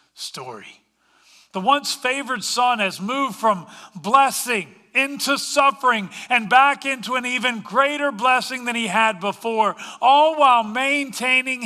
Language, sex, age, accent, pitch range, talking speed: English, male, 50-69, American, 175-245 Hz, 130 wpm